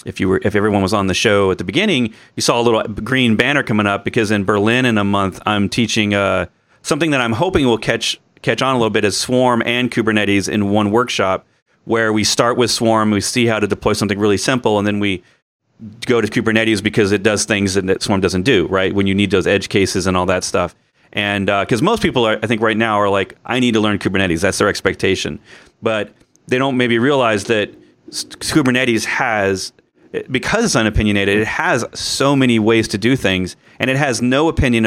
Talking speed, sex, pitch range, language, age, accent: 220 wpm, male, 100-125 Hz, English, 40-59, American